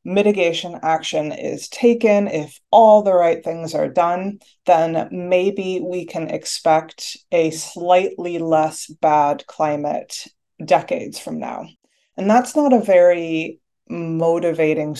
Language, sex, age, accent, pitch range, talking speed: English, female, 20-39, American, 160-200 Hz, 120 wpm